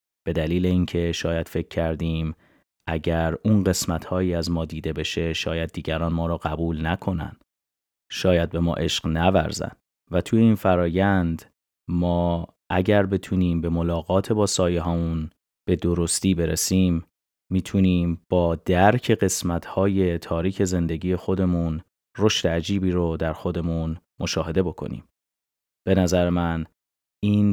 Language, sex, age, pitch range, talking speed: Persian, male, 30-49, 85-95 Hz, 130 wpm